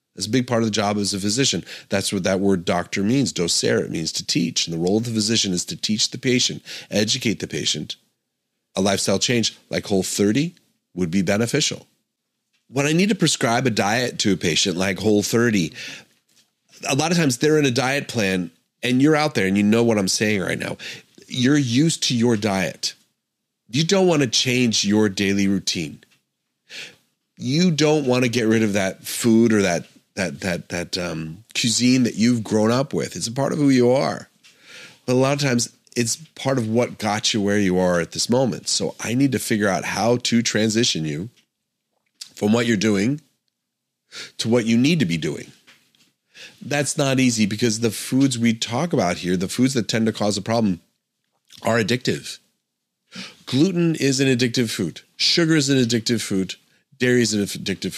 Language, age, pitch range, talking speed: English, 30-49, 100-130 Hz, 195 wpm